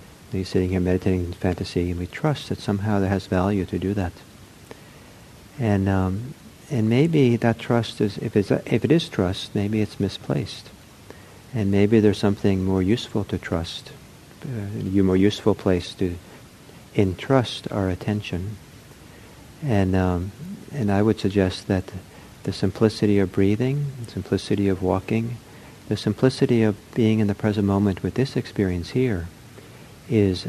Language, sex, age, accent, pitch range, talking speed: English, male, 50-69, American, 95-115 Hz, 155 wpm